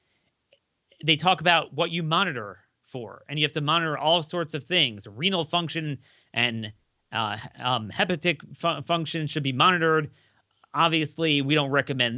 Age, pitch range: 30-49, 125-165 Hz